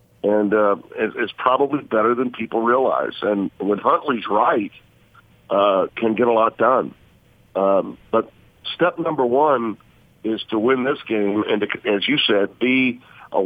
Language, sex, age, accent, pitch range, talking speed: English, male, 50-69, American, 105-135 Hz, 155 wpm